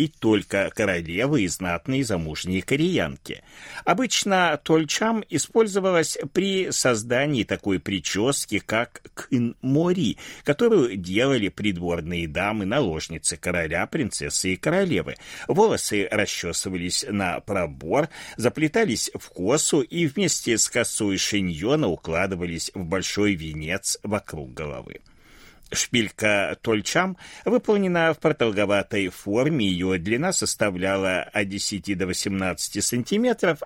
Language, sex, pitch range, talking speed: Russian, male, 90-140 Hz, 100 wpm